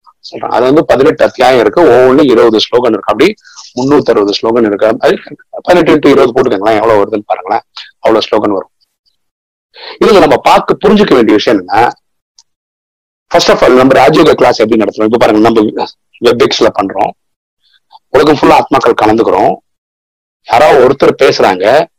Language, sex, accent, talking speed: Tamil, male, native, 100 wpm